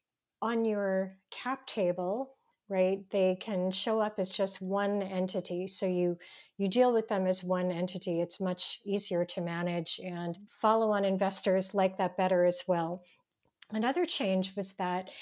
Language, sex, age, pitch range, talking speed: English, female, 40-59, 180-215 Hz, 160 wpm